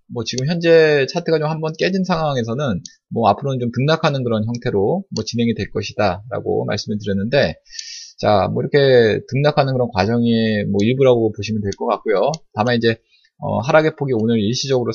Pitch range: 110-170 Hz